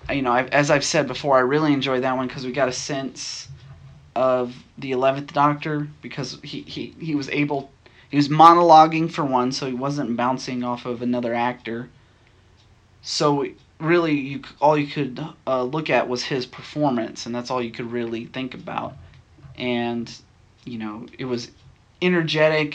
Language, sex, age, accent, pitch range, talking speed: English, male, 30-49, American, 120-145 Hz, 175 wpm